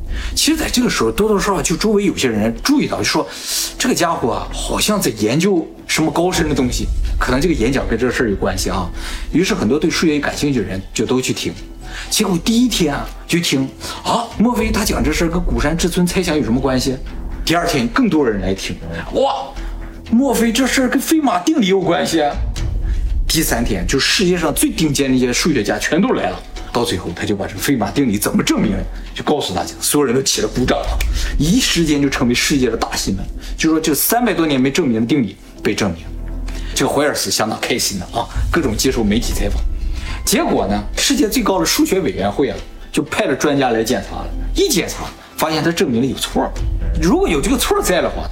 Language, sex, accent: Chinese, male, native